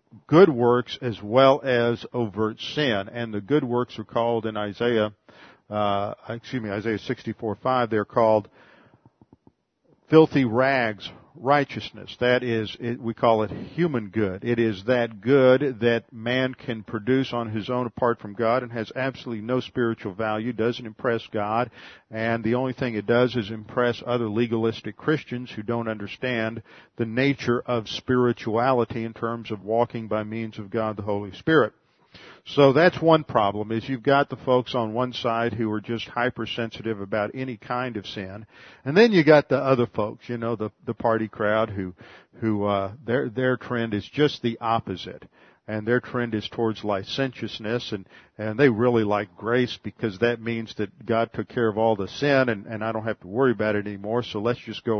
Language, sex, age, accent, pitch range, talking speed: English, male, 50-69, American, 110-125 Hz, 180 wpm